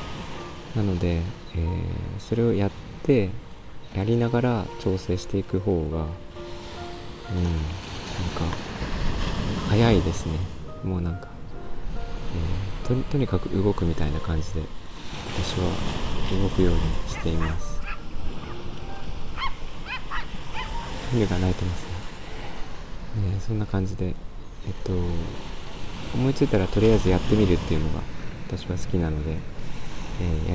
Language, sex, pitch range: Japanese, male, 85-105 Hz